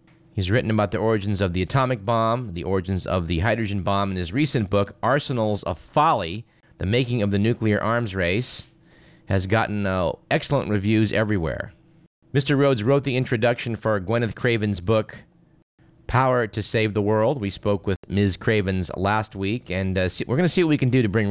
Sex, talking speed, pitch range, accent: male, 190 wpm, 100-135 Hz, American